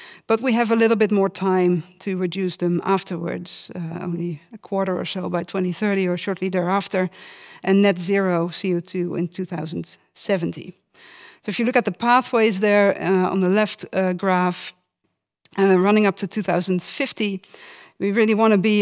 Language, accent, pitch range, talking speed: English, Dutch, 180-220 Hz, 170 wpm